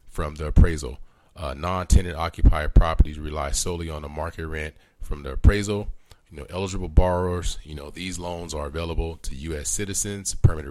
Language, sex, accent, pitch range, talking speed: English, male, American, 75-90 Hz, 170 wpm